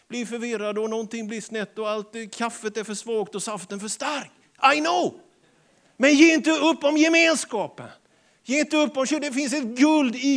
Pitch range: 230-285 Hz